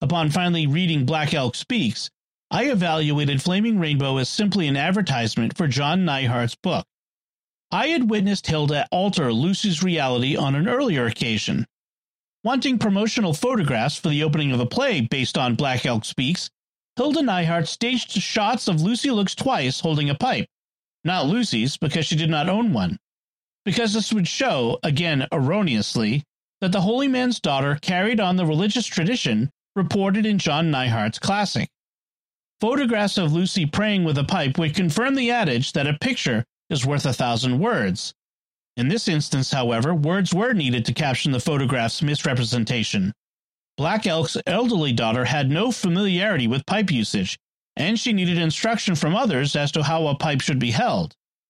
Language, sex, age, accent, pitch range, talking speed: English, male, 40-59, American, 140-205 Hz, 160 wpm